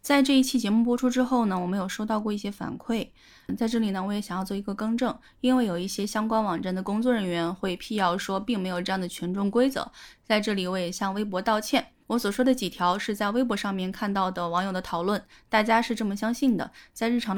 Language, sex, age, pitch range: Chinese, female, 20-39, 185-240 Hz